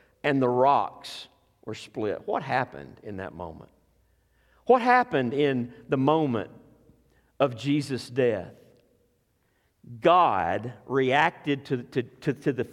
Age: 50-69